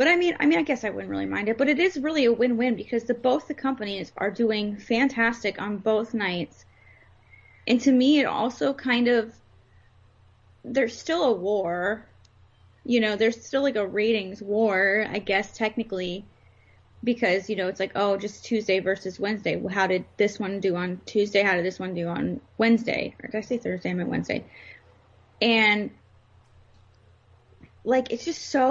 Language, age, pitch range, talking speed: English, 20-39, 185-235 Hz, 185 wpm